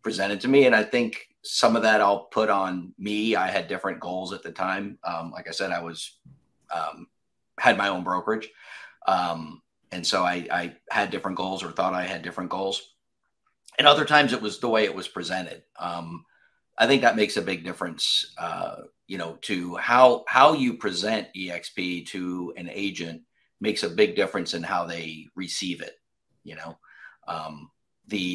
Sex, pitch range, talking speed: male, 85-100 Hz, 185 wpm